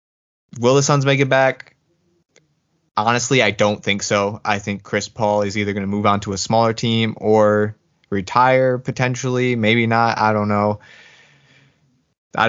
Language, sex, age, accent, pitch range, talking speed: English, male, 20-39, American, 100-115 Hz, 165 wpm